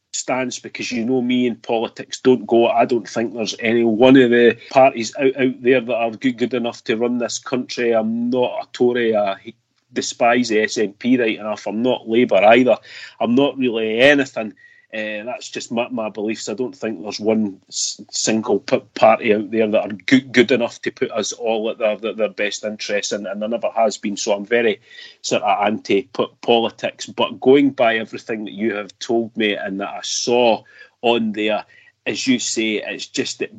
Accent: British